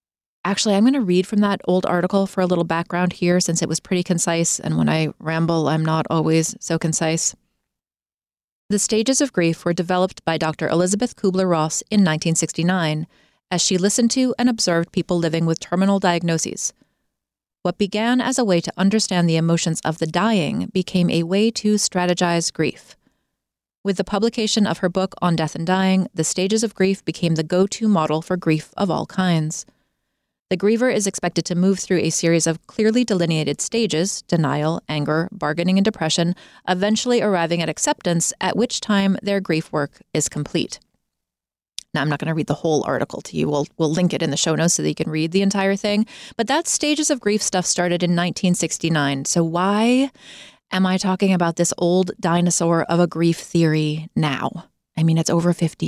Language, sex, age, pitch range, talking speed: English, female, 30-49, 160-195 Hz, 190 wpm